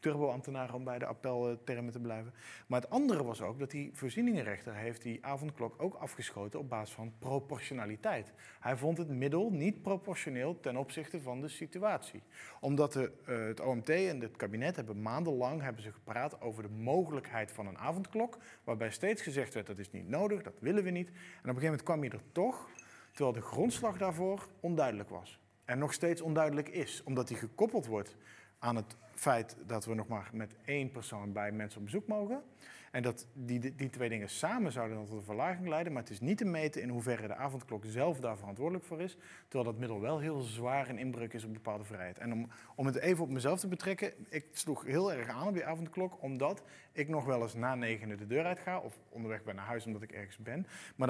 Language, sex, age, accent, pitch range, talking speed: Dutch, male, 40-59, Dutch, 115-165 Hz, 215 wpm